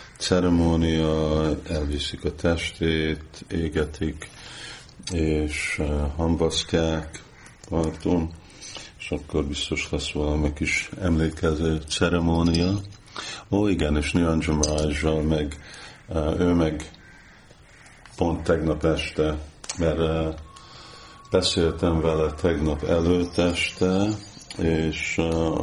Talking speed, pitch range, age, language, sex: 80 wpm, 75-85 Hz, 50-69, Hungarian, male